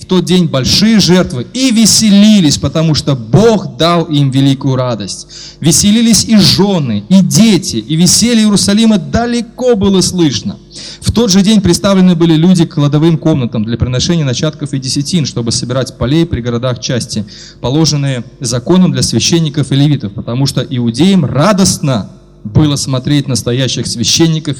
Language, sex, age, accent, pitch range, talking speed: Russian, male, 30-49, native, 125-170 Hz, 145 wpm